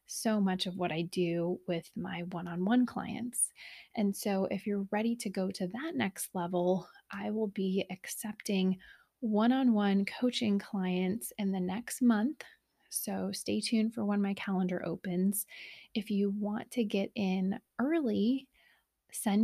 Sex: female